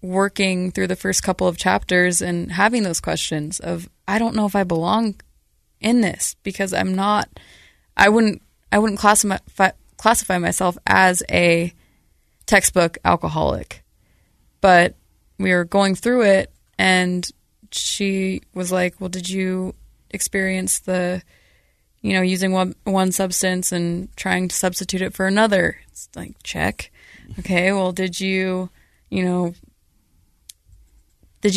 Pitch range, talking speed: 175-200 Hz, 135 wpm